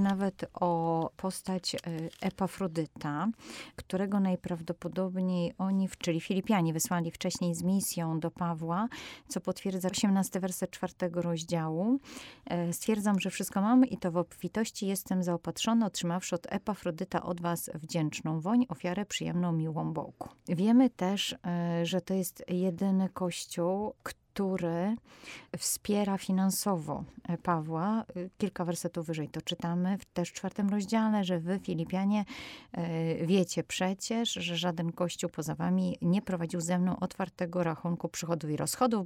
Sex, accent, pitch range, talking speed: female, native, 170-195 Hz, 130 wpm